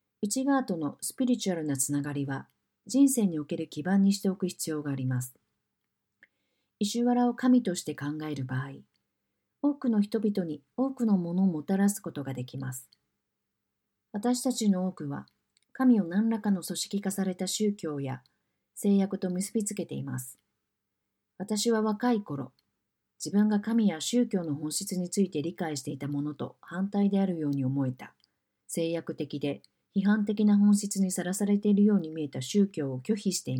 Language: Japanese